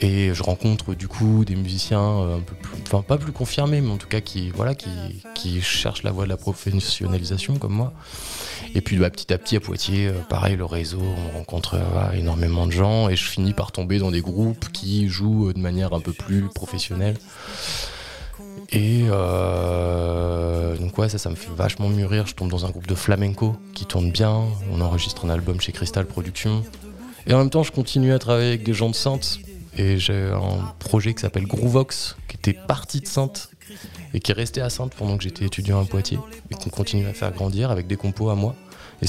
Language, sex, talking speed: French, male, 210 wpm